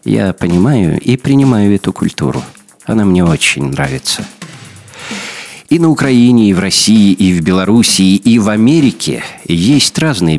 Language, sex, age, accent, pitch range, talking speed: Russian, male, 50-69, native, 85-120 Hz, 140 wpm